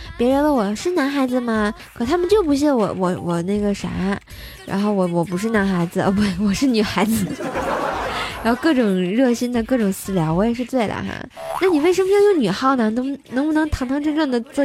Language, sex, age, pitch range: Chinese, female, 20-39, 205-275 Hz